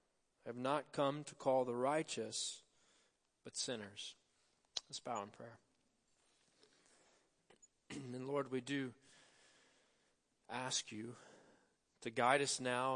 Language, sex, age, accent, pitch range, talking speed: English, male, 40-59, American, 120-160 Hz, 110 wpm